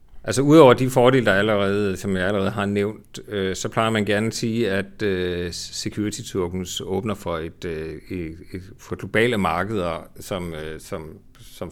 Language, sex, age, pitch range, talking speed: Danish, male, 40-59, 90-105 Hz, 180 wpm